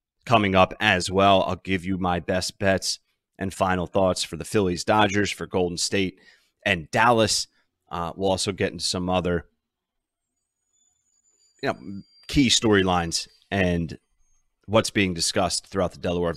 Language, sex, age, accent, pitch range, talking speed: English, male, 30-49, American, 90-110 Hz, 145 wpm